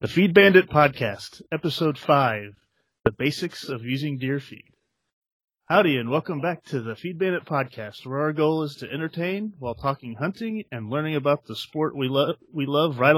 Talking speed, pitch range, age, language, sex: 180 wpm, 125-155 Hz, 30-49, English, male